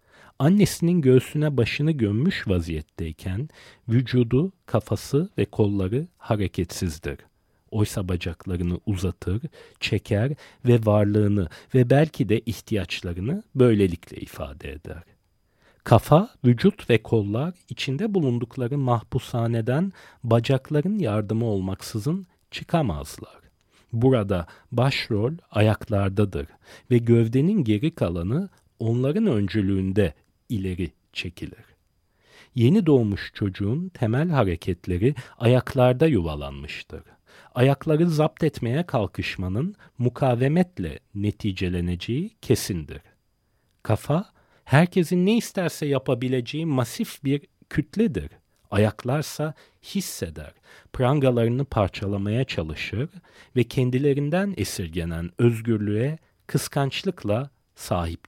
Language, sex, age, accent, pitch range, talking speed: Turkish, male, 40-59, native, 100-145 Hz, 80 wpm